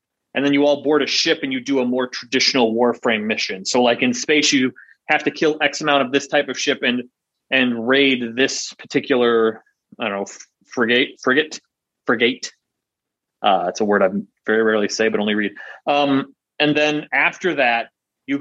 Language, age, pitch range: English, 30-49, 120-150 Hz